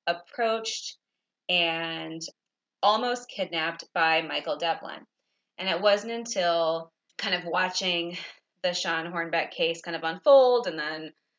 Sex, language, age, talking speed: female, English, 20-39, 120 wpm